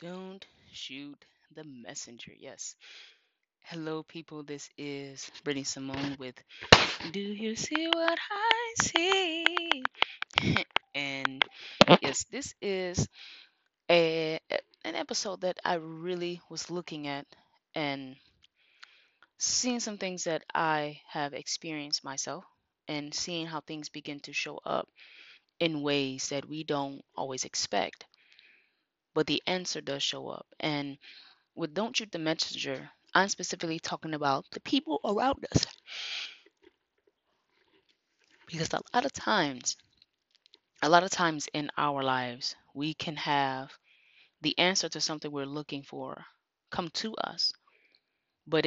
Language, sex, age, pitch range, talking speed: English, female, 20-39, 145-180 Hz, 125 wpm